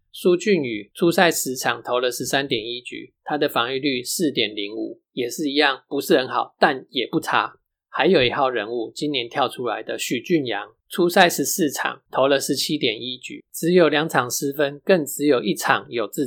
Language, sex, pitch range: Chinese, male, 130-185 Hz